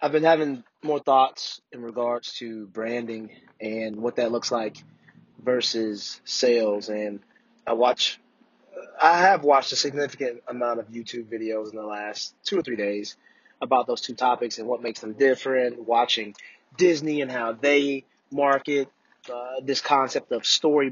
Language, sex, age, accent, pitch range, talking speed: English, male, 30-49, American, 115-140 Hz, 160 wpm